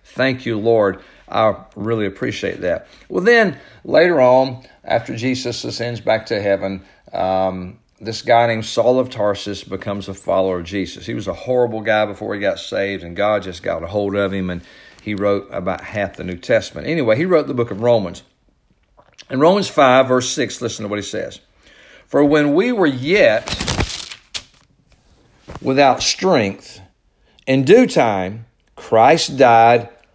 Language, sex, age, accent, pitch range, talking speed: English, male, 50-69, American, 100-130 Hz, 165 wpm